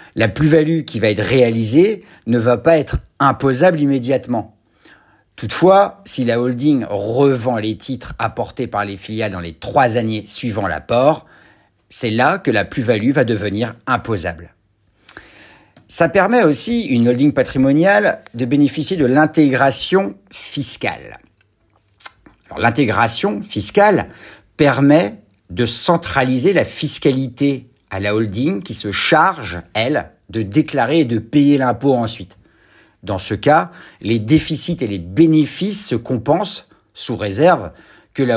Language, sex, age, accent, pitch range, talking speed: French, male, 50-69, French, 110-150 Hz, 130 wpm